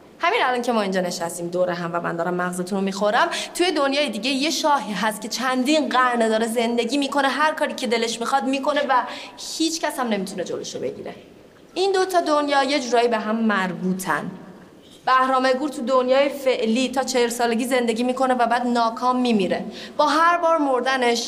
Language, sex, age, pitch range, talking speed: Persian, female, 30-49, 200-270 Hz, 180 wpm